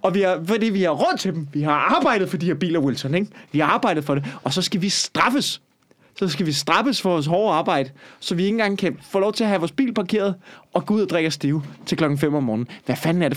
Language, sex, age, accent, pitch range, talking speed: Danish, male, 30-49, native, 135-175 Hz, 285 wpm